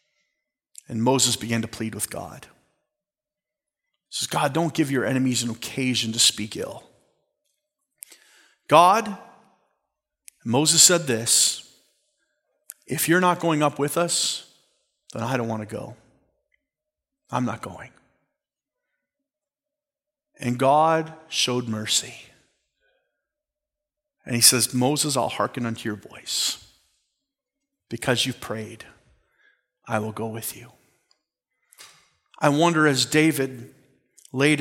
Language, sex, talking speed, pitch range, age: English, male, 115 wpm, 125-210 Hz, 40-59